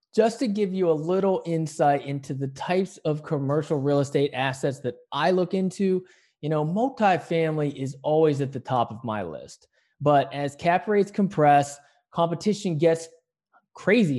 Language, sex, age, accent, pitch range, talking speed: English, male, 20-39, American, 140-180 Hz, 160 wpm